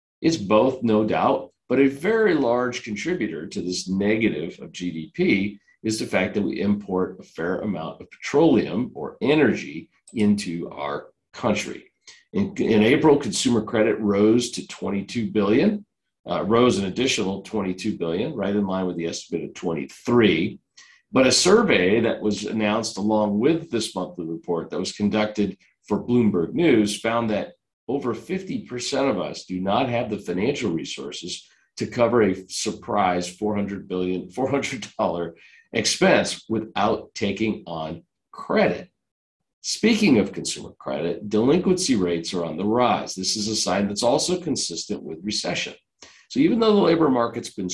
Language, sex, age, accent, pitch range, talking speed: English, male, 50-69, American, 95-125 Hz, 150 wpm